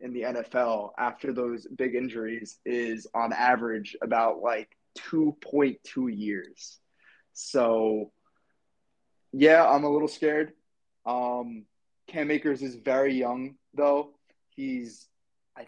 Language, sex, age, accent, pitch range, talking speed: English, male, 20-39, American, 125-150 Hz, 110 wpm